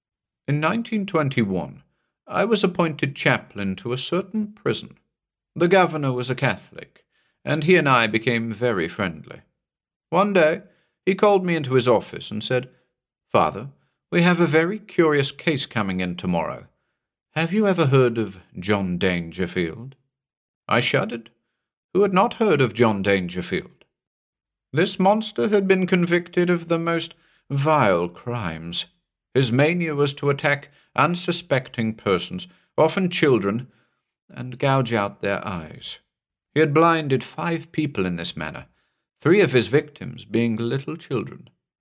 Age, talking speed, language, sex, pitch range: 50-69, 140 wpm, English, male, 115-175 Hz